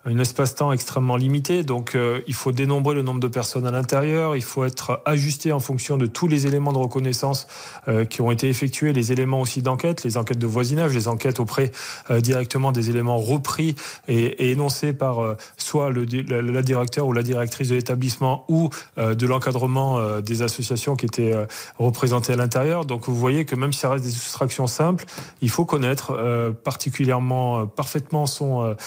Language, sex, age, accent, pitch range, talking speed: French, male, 30-49, French, 125-145 Hz, 195 wpm